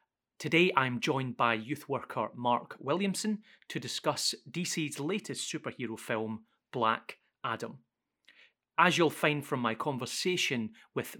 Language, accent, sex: English, British, male